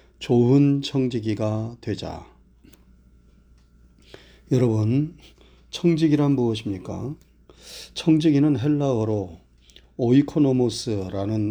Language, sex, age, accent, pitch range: Korean, male, 30-49, native, 95-140 Hz